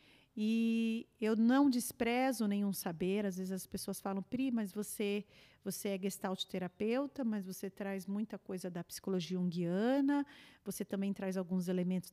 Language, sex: Portuguese, female